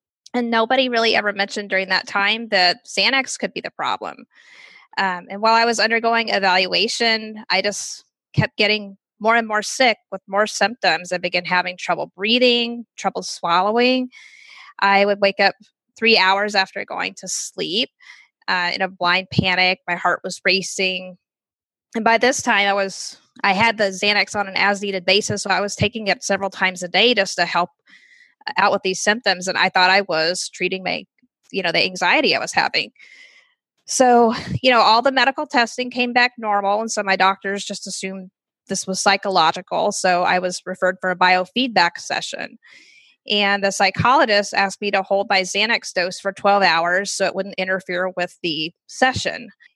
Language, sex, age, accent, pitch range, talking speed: English, female, 20-39, American, 190-225 Hz, 180 wpm